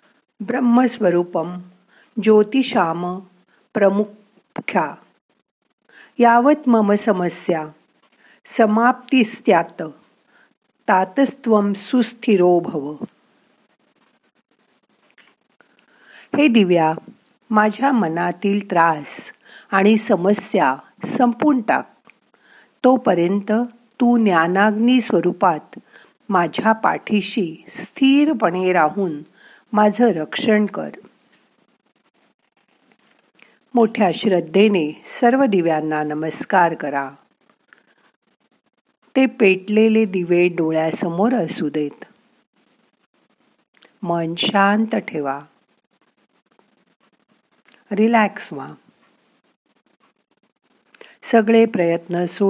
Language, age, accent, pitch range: Marathi, 50-69, native, 170-230 Hz